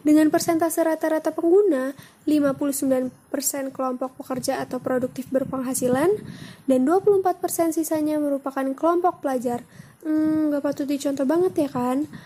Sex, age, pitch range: female, 20-39, 255-290 Hz